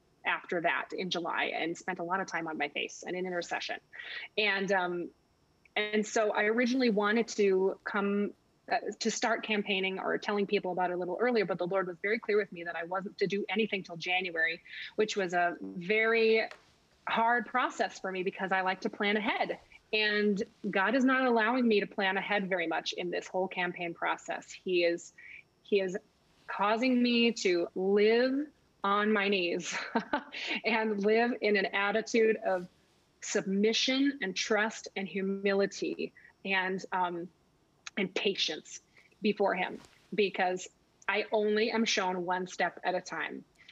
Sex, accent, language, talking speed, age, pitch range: female, American, English, 165 wpm, 20-39, 185-225 Hz